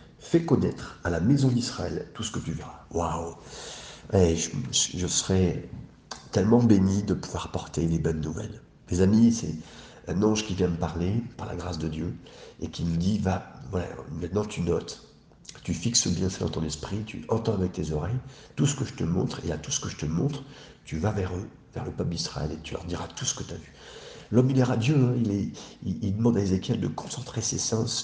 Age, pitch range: 50-69, 90-125 Hz